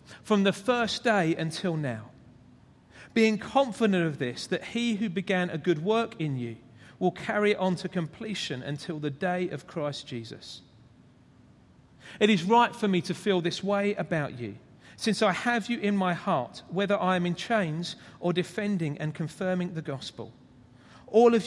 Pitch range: 145-200 Hz